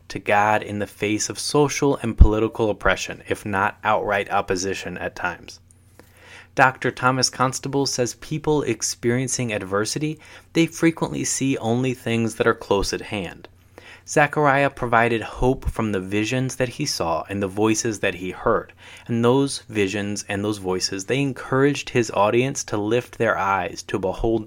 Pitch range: 100-125 Hz